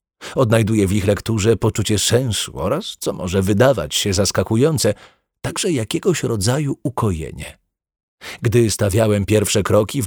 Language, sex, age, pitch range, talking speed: Polish, male, 40-59, 100-130 Hz, 125 wpm